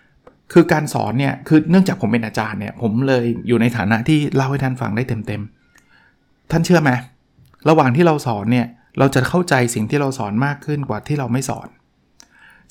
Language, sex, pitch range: Thai, male, 120-155 Hz